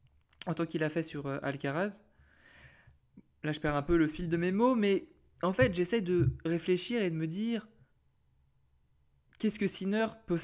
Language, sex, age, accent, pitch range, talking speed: French, male, 20-39, French, 145-180 Hz, 180 wpm